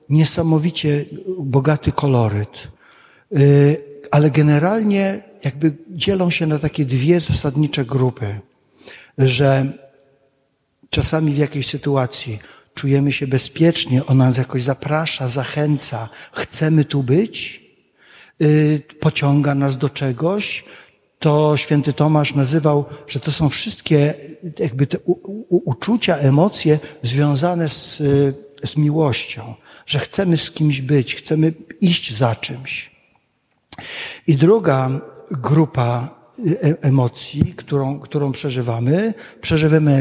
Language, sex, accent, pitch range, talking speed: Polish, male, native, 135-160 Hz, 105 wpm